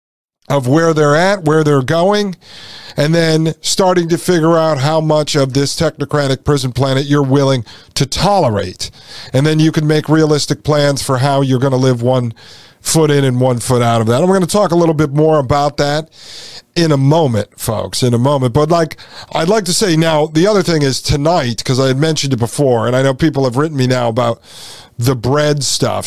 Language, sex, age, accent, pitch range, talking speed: English, male, 40-59, American, 130-160 Hz, 215 wpm